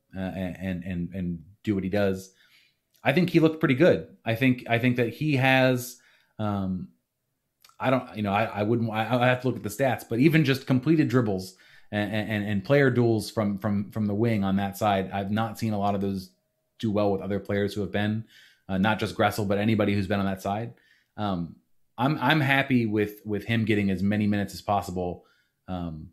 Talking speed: 220 wpm